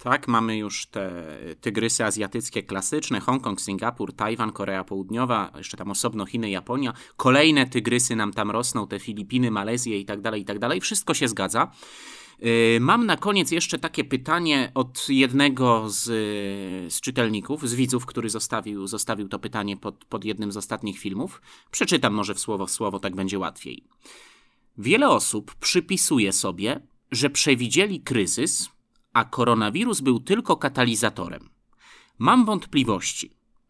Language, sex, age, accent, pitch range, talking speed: Polish, male, 30-49, native, 105-165 Hz, 145 wpm